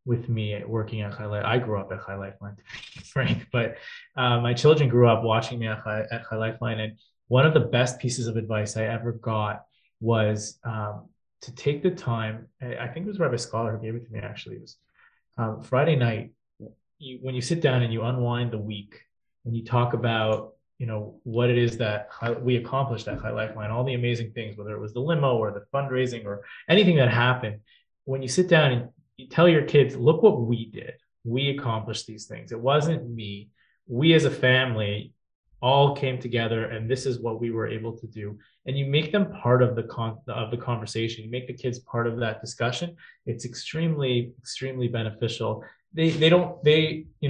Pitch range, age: 110-130 Hz, 20-39